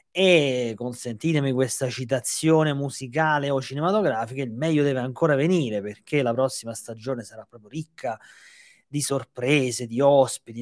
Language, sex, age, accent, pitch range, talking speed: Italian, male, 30-49, native, 125-165 Hz, 130 wpm